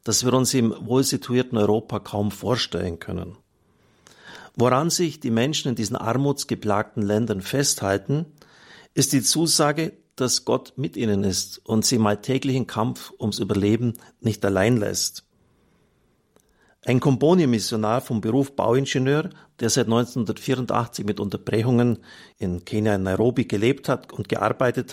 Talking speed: 135 wpm